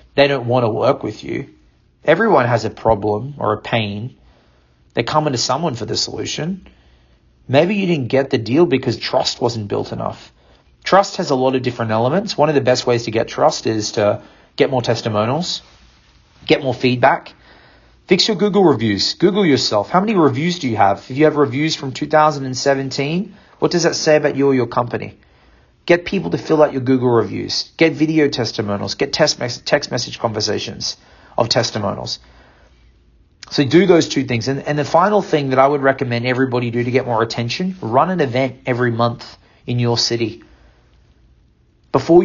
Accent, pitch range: Australian, 115-150 Hz